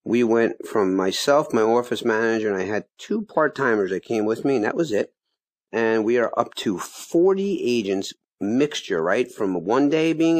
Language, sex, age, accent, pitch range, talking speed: English, male, 50-69, American, 100-130 Hz, 190 wpm